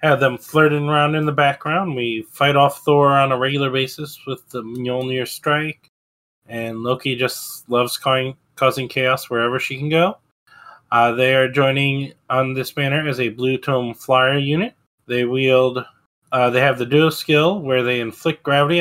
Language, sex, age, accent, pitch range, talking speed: English, male, 20-39, American, 120-145 Hz, 175 wpm